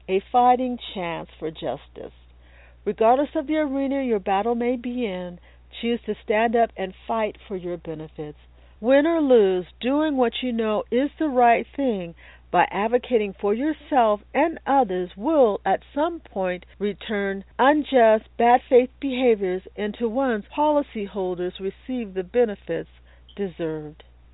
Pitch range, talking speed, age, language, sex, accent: 175-245 Hz, 140 wpm, 50-69, English, female, American